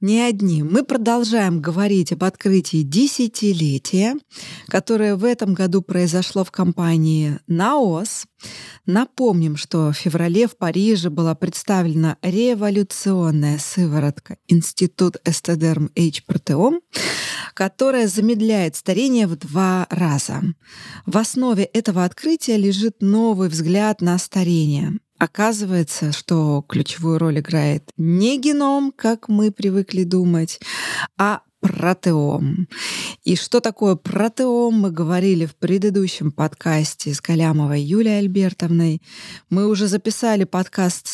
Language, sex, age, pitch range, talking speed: Russian, female, 20-39, 165-205 Hz, 110 wpm